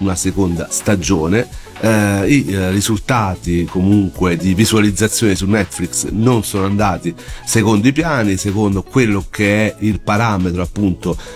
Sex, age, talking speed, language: male, 40-59, 125 wpm, Italian